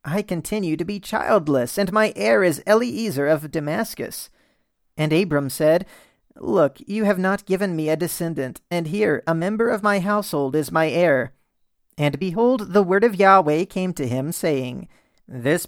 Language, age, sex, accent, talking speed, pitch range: English, 40-59, male, American, 170 wpm, 145-200 Hz